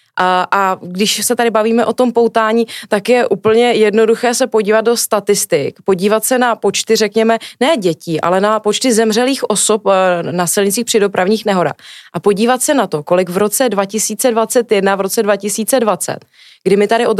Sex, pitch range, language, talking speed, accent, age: female, 185-225 Hz, Czech, 175 wpm, native, 20-39